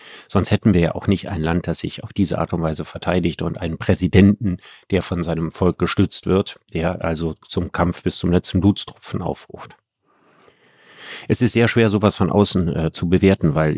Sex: male